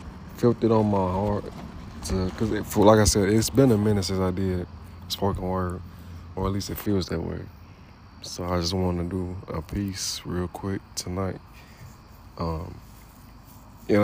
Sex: male